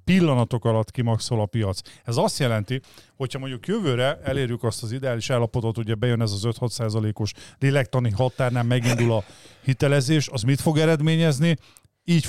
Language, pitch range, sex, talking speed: Hungarian, 120-140 Hz, male, 155 wpm